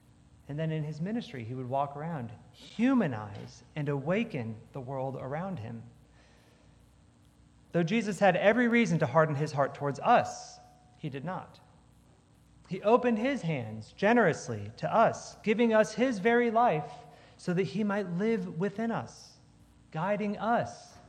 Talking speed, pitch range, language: 145 wpm, 125-205 Hz, English